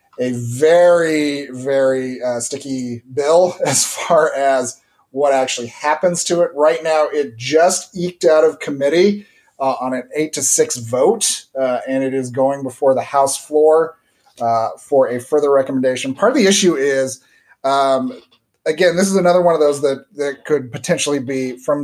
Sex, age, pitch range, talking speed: male, 30-49, 125-160 Hz, 170 wpm